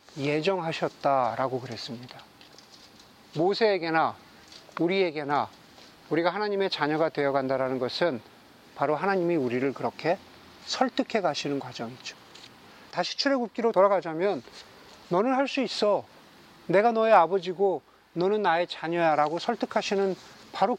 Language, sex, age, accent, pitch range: Korean, male, 40-59, native, 160-230 Hz